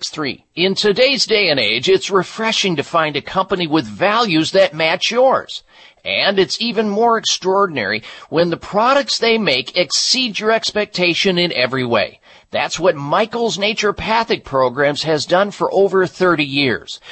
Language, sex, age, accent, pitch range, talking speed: English, male, 50-69, American, 160-220 Hz, 150 wpm